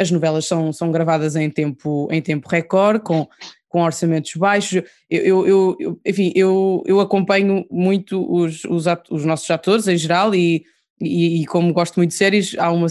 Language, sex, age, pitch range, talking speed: Portuguese, female, 20-39, 165-195 Hz, 185 wpm